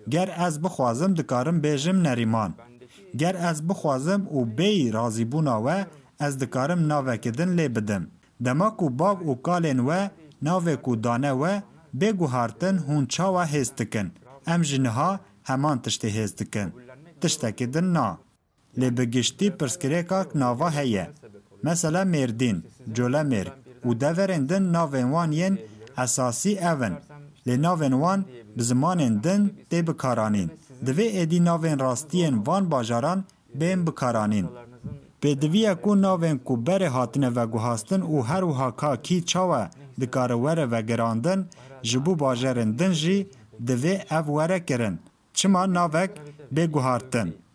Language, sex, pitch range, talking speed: Turkish, male, 125-175 Hz, 115 wpm